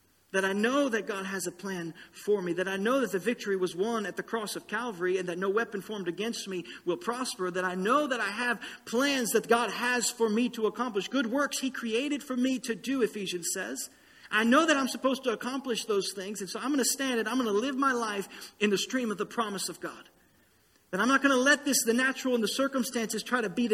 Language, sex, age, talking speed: English, male, 40-59, 255 wpm